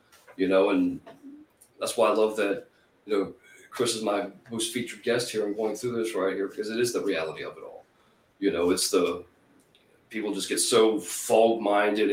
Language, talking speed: English, 200 wpm